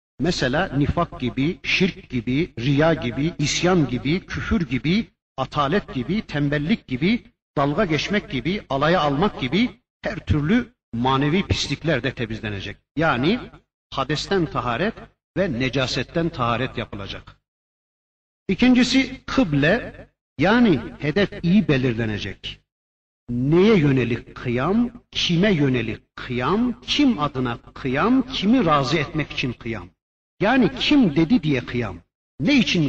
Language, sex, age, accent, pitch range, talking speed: Turkish, male, 60-79, native, 125-195 Hz, 110 wpm